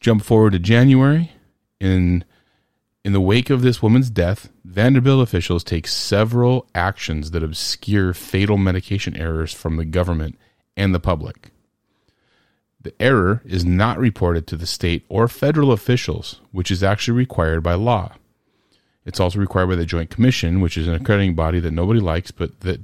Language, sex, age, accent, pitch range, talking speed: English, male, 30-49, American, 90-110 Hz, 165 wpm